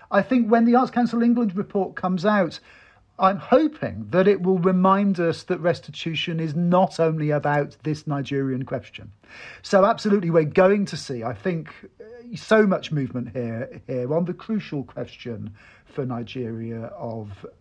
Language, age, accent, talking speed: English, 40-59, British, 155 wpm